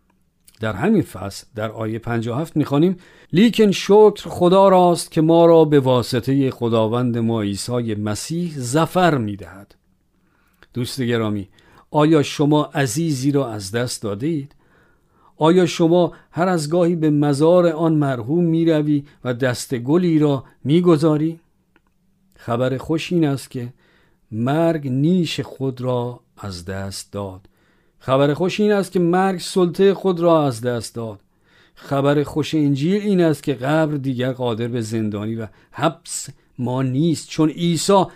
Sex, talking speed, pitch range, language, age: male, 140 wpm, 120-165 Hz, Persian, 50-69